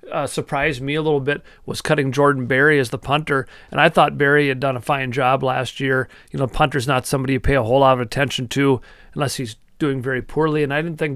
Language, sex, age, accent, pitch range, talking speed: English, male, 40-59, American, 130-150 Hz, 245 wpm